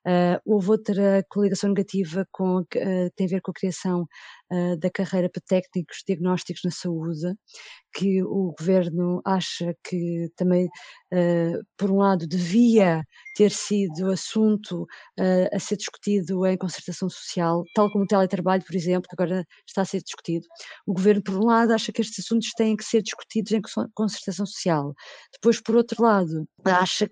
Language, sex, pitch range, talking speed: Portuguese, female, 185-220 Hz, 155 wpm